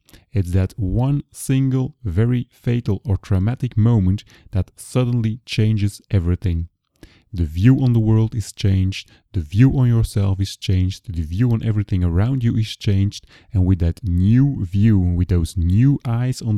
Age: 30-49